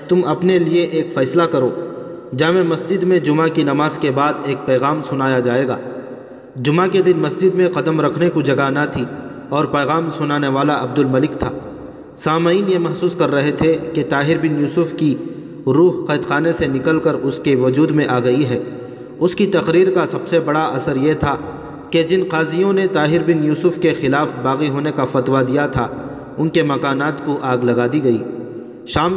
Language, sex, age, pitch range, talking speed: Urdu, male, 40-59, 135-165 Hz, 195 wpm